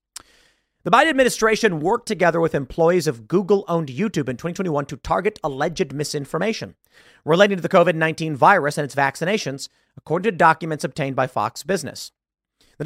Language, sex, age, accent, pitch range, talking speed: English, male, 40-59, American, 150-200 Hz, 150 wpm